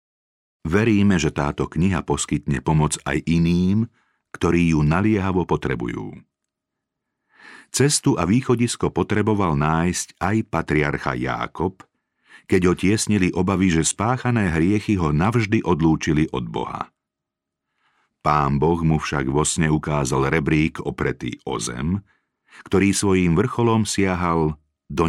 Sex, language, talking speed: male, Slovak, 110 wpm